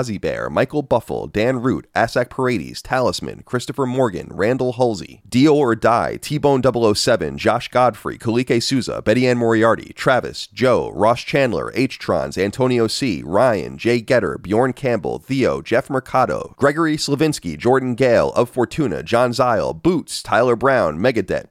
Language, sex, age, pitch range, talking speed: English, male, 30-49, 125-140 Hz, 150 wpm